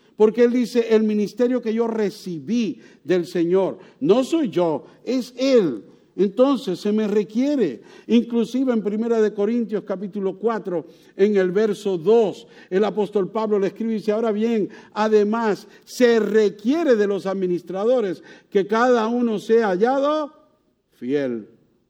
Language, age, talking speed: English, 60-79, 135 wpm